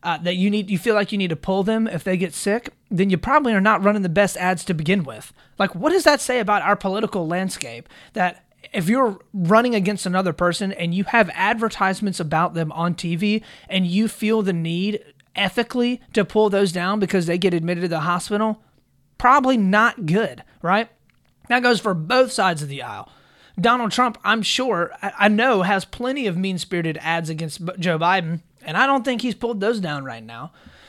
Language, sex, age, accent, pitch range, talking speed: English, male, 30-49, American, 175-225 Hz, 205 wpm